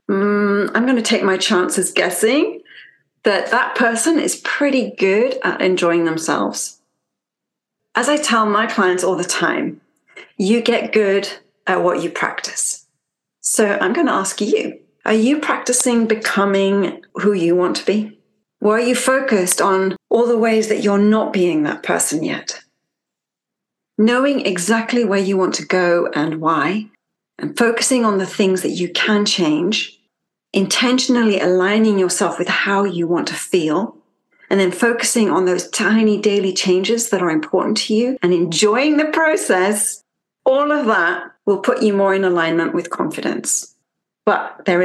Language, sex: English, female